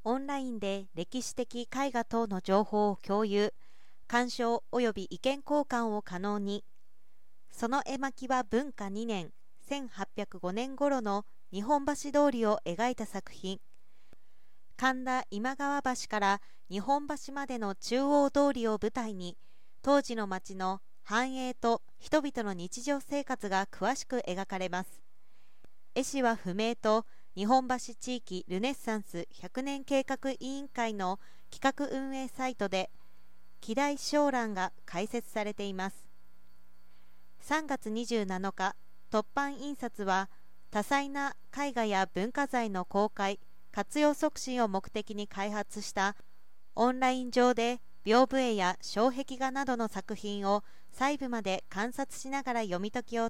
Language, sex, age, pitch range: Japanese, female, 40-59, 195-260 Hz